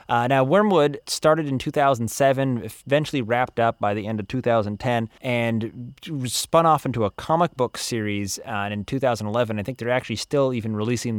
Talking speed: 170 wpm